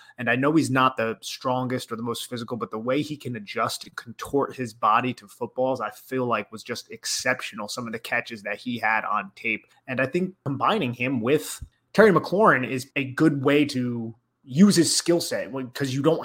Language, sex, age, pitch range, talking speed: English, male, 30-49, 120-145 Hz, 215 wpm